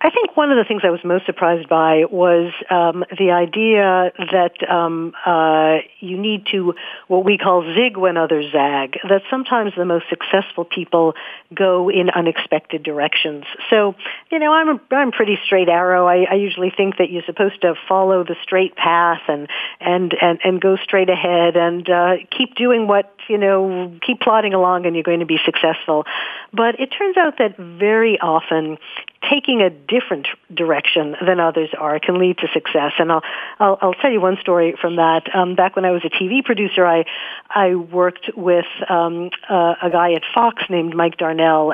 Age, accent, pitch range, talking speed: 50-69, American, 170-205 Hz, 190 wpm